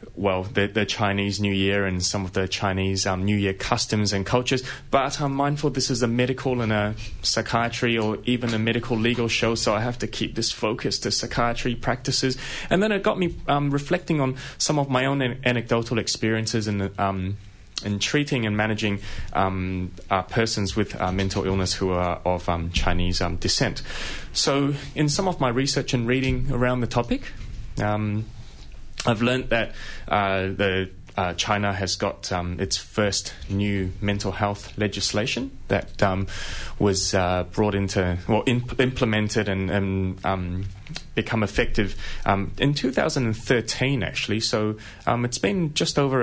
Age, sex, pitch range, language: 20-39, male, 95-125 Hz, English